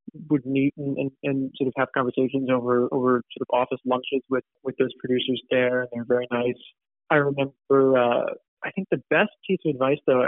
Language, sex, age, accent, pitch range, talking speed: English, male, 30-49, American, 125-140 Hz, 205 wpm